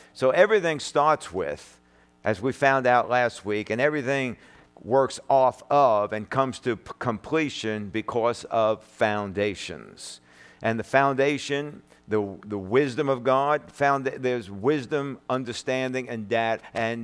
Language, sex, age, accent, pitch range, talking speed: English, male, 50-69, American, 105-130 Hz, 125 wpm